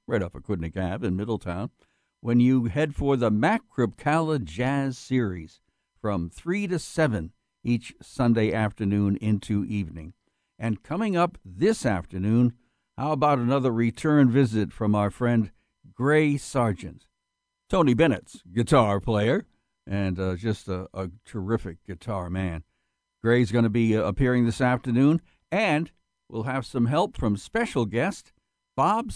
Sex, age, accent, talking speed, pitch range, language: male, 60-79, American, 140 wpm, 95-130 Hz, English